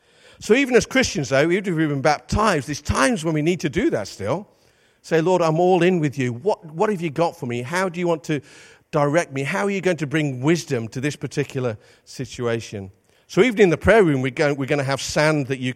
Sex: male